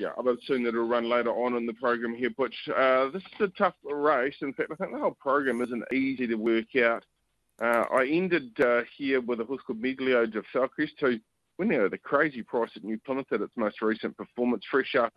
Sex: male